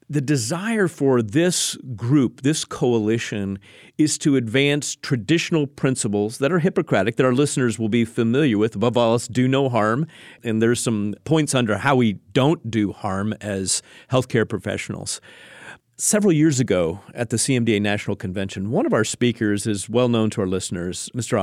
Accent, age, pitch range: American, 40-59, 115-150 Hz